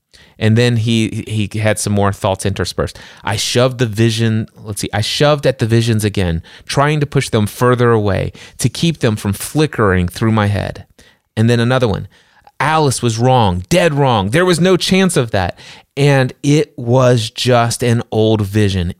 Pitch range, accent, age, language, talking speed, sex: 105-130 Hz, American, 30-49, English, 180 wpm, male